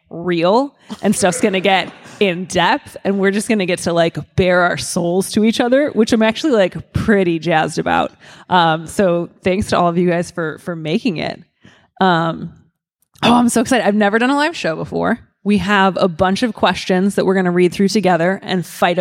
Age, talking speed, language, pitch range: 20-39, 210 wpm, English, 175-205 Hz